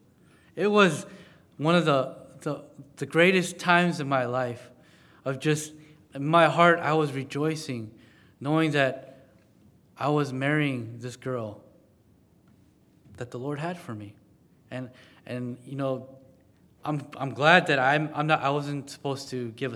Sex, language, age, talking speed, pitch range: male, English, 20-39, 150 wpm, 125-155 Hz